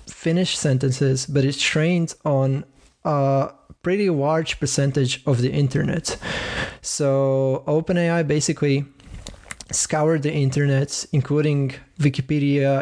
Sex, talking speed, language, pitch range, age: male, 100 wpm, English, 135-155 Hz, 20-39